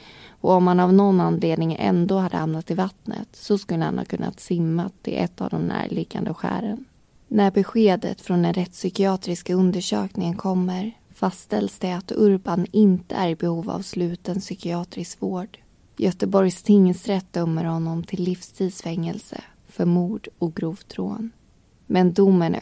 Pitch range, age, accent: 170-195 Hz, 20-39, native